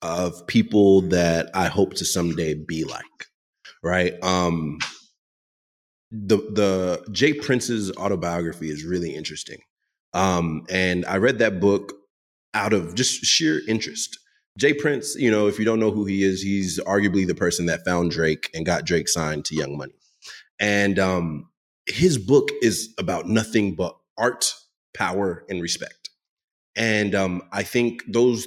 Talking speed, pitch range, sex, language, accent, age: 150 wpm, 90-105 Hz, male, English, American, 30-49